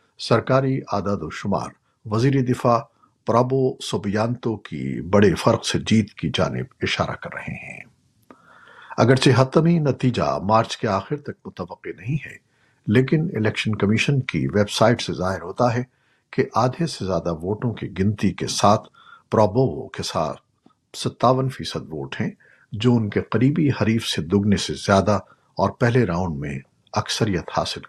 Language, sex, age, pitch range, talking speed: Urdu, male, 50-69, 100-135 Hz, 150 wpm